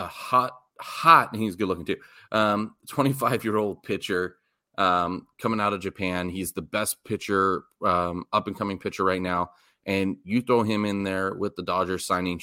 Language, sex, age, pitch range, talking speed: English, male, 30-49, 90-110 Hz, 185 wpm